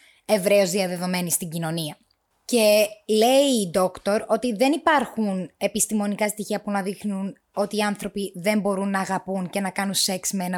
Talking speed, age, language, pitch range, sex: 165 wpm, 20-39, Greek, 185-230 Hz, female